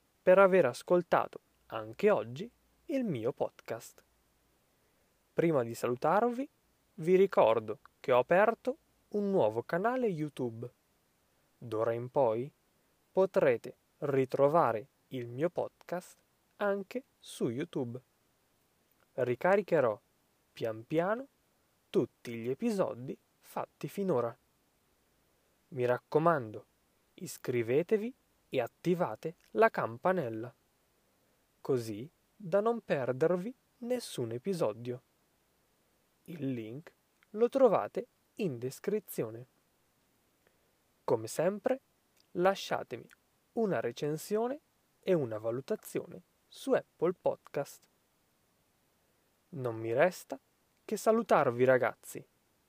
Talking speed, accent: 85 wpm, native